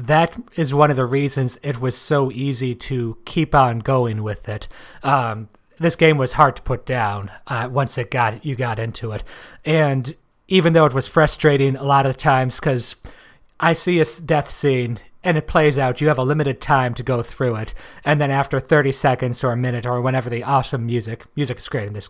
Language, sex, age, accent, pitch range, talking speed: English, male, 30-49, American, 125-150 Hz, 215 wpm